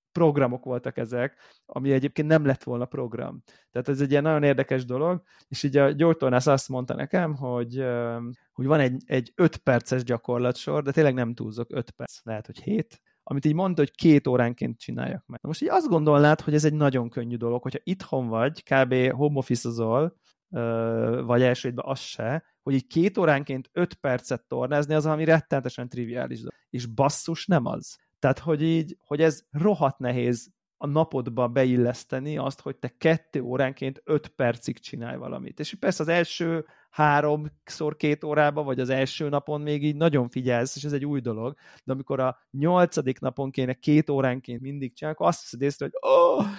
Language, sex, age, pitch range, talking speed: Hungarian, male, 30-49, 125-155 Hz, 175 wpm